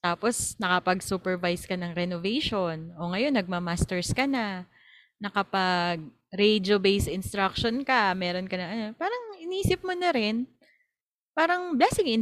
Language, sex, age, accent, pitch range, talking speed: Filipino, female, 20-39, native, 185-250 Hz, 130 wpm